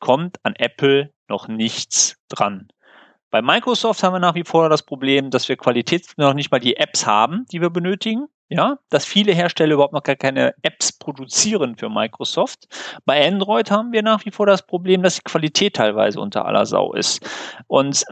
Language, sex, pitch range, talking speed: German, male, 140-195 Hz, 190 wpm